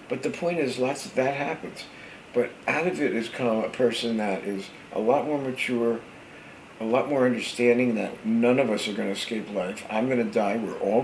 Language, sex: English, male